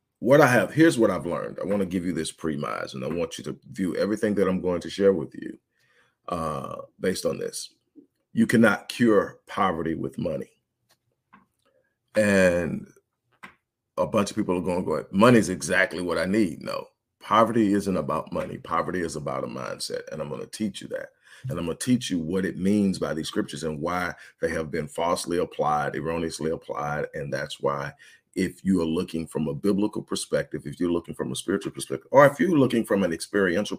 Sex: male